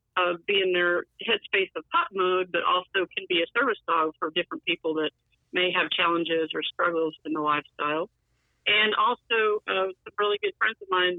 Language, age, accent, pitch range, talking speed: English, 50-69, American, 165-200 Hz, 190 wpm